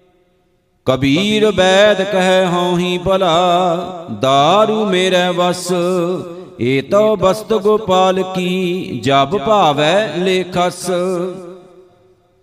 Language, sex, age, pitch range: Punjabi, male, 50-69, 175-185 Hz